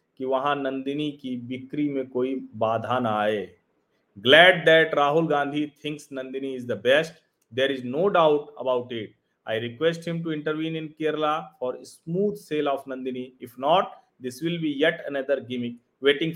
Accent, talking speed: native, 100 wpm